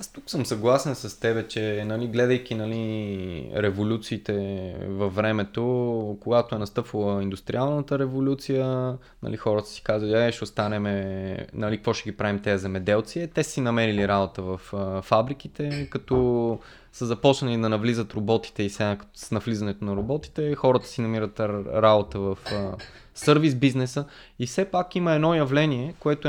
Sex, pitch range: male, 110-140 Hz